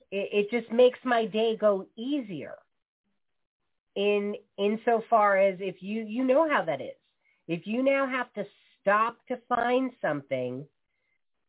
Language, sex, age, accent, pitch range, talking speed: English, female, 40-59, American, 200-275 Hz, 140 wpm